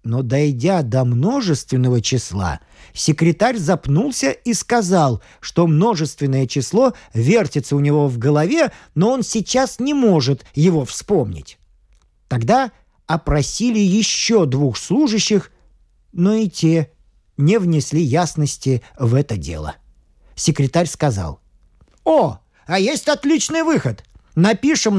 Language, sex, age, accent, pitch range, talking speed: Russian, male, 50-69, native, 130-205 Hz, 110 wpm